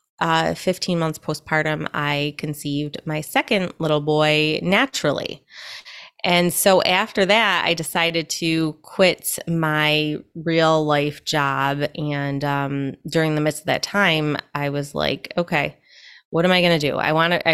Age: 20-39